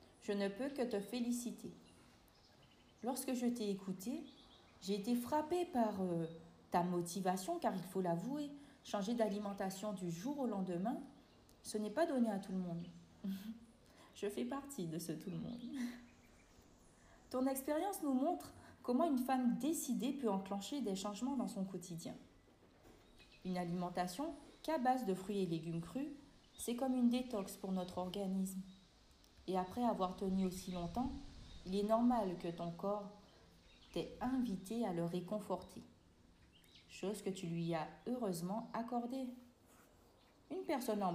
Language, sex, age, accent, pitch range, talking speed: French, female, 40-59, French, 180-245 Hz, 145 wpm